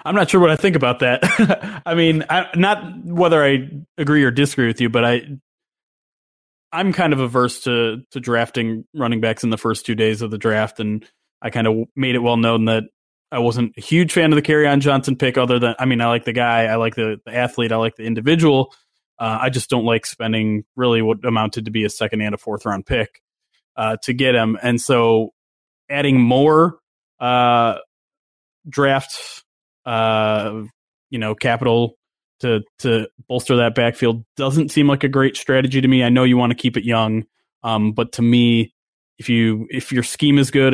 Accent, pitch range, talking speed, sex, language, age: American, 115-135 Hz, 205 wpm, male, English, 20-39